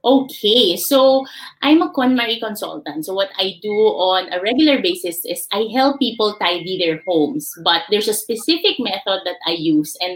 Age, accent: 20-39, Filipino